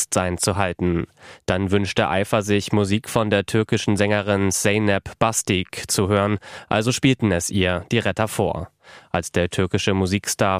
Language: German